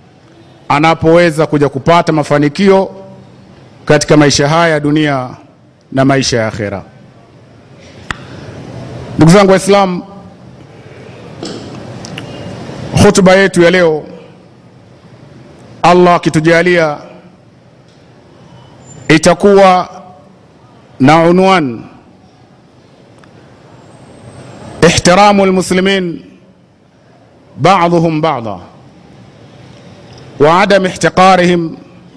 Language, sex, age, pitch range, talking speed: Swahili, male, 50-69, 145-185 Hz, 55 wpm